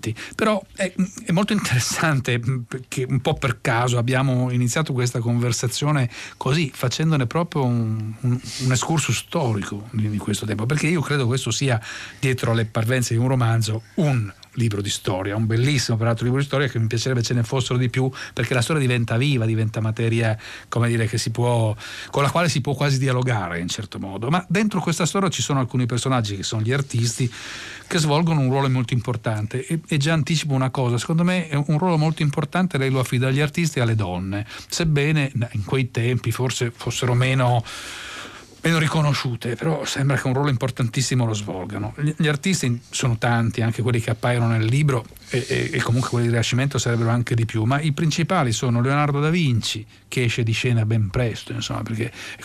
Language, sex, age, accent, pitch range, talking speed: Italian, male, 40-59, native, 115-140 Hz, 195 wpm